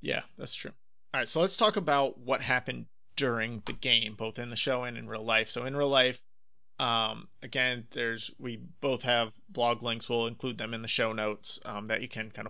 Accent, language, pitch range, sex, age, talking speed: American, English, 110-130 Hz, male, 30-49, 220 wpm